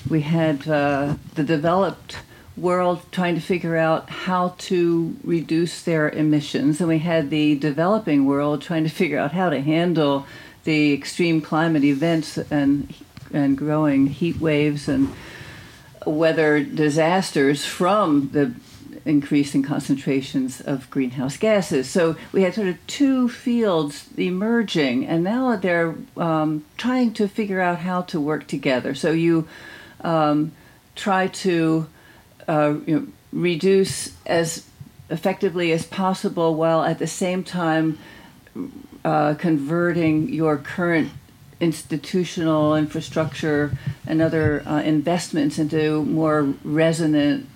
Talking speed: 125 wpm